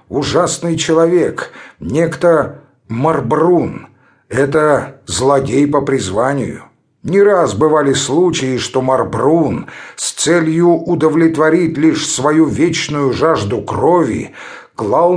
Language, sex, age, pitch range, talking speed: English, male, 50-69, 130-160 Hz, 90 wpm